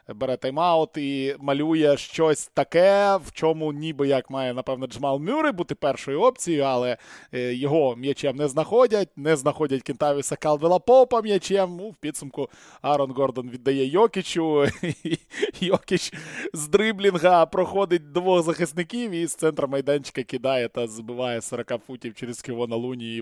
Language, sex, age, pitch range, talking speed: Ukrainian, male, 20-39, 130-180 Hz, 145 wpm